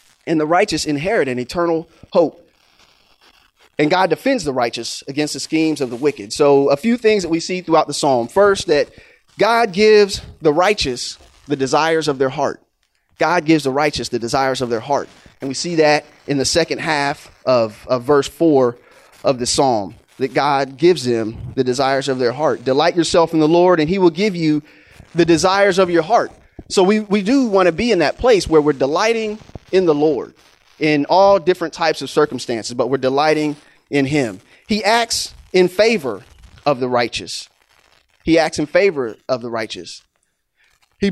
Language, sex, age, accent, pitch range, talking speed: English, male, 30-49, American, 135-180 Hz, 190 wpm